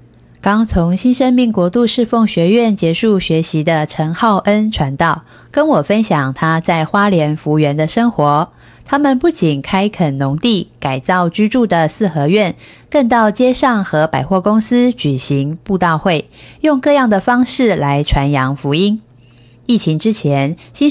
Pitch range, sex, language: 155-230 Hz, female, Chinese